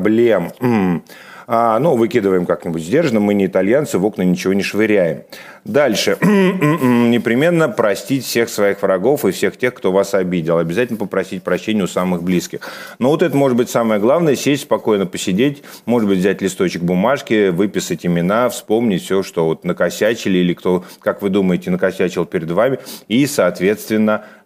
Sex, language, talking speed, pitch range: male, Russian, 150 wpm, 90-115 Hz